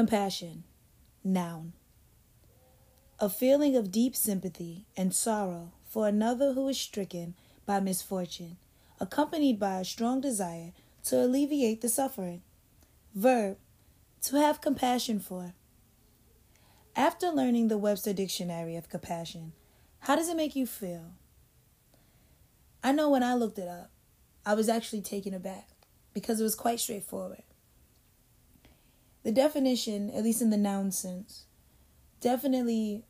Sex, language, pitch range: female, English, 185-235 Hz